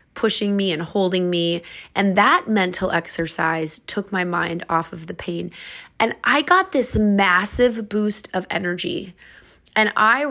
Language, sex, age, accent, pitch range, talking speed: English, female, 20-39, American, 175-215 Hz, 150 wpm